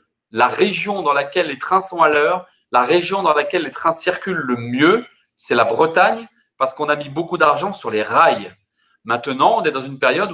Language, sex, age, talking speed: French, male, 30-49, 210 wpm